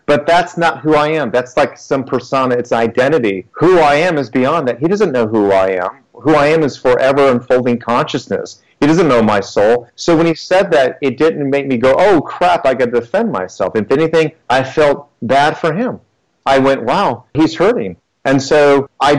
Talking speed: 215 wpm